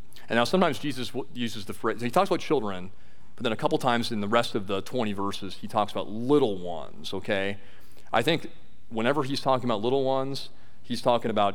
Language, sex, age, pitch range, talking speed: English, male, 40-59, 100-140 Hz, 210 wpm